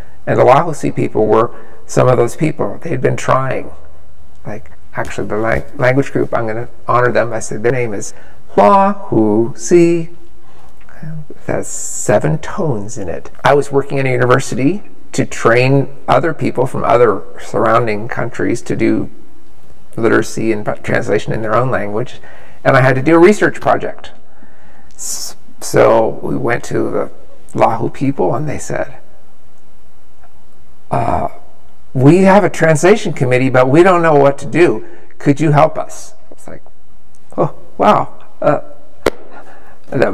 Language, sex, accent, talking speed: English, male, American, 150 wpm